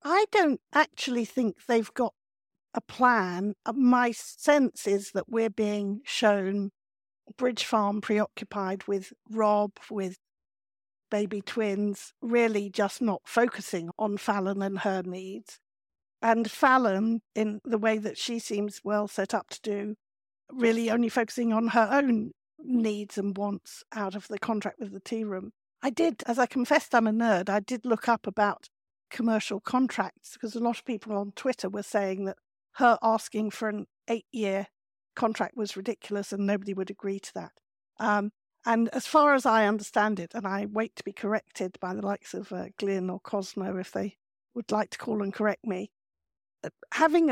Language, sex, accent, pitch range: English, female, British, 200-235 Hz